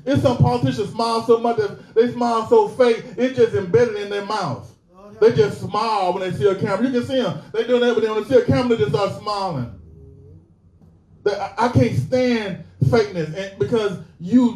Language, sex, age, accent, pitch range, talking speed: English, male, 20-39, American, 210-270 Hz, 200 wpm